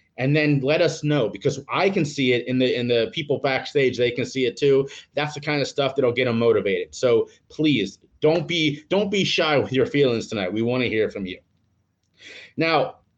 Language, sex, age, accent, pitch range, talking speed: English, male, 30-49, American, 125-165 Hz, 225 wpm